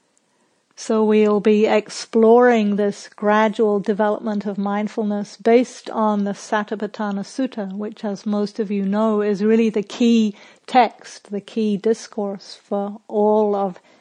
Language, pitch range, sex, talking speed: English, 205-225 Hz, female, 135 wpm